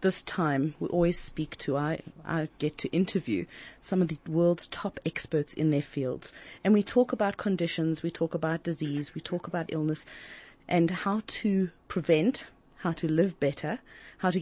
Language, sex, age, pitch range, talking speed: English, female, 30-49, 155-195 Hz, 180 wpm